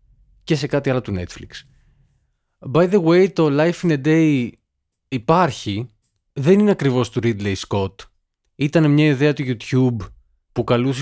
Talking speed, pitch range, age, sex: 150 wpm, 105-155 Hz, 20-39, male